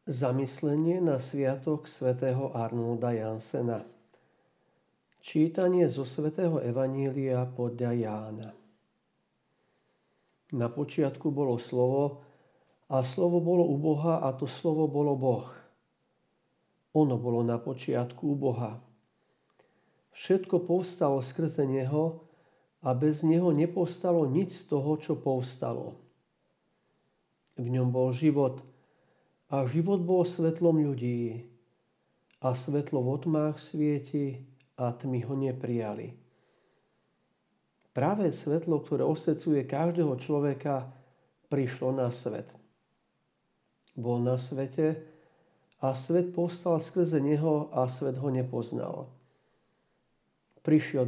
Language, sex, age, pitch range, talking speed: Slovak, male, 50-69, 130-160 Hz, 100 wpm